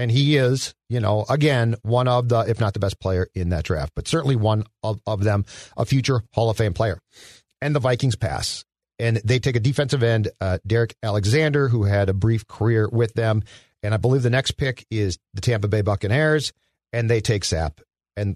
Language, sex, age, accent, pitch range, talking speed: English, male, 50-69, American, 105-140 Hz, 210 wpm